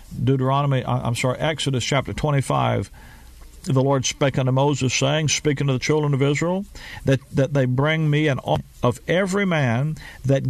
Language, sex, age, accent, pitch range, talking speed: English, male, 50-69, American, 120-155 Hz, 165 wpm